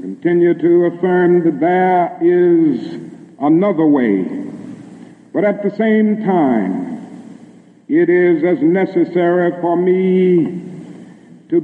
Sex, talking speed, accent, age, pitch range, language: male, 105 wpm, American, 60-79, 170-200 Hz, English